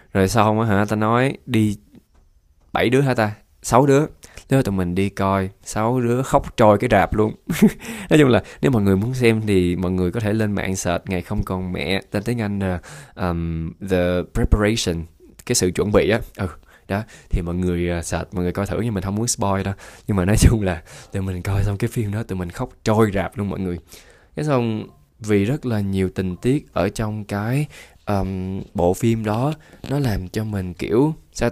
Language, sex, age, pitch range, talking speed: Vietnamese, male, 20-39, 90-120 Hz, 220 wpm